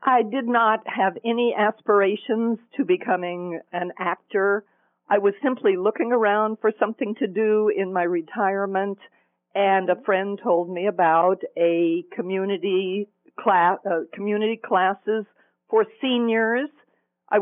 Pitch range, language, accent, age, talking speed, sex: 195-235 Hz, English, American, 50-69, 125 wpm, female